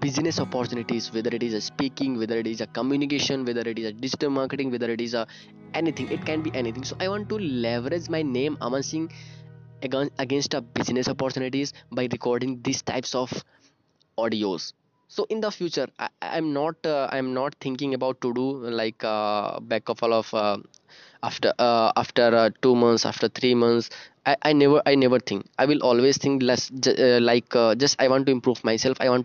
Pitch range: 120-135 Hz